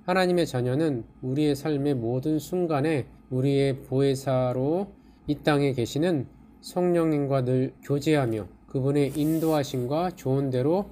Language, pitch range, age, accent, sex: Korean, 130-165 Hz, 20-39, native, male